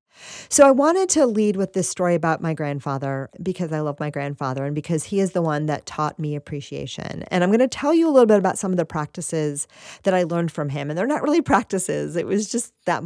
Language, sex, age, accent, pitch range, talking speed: English, female, 40-59, American, 155-210 Hz, 250 wpm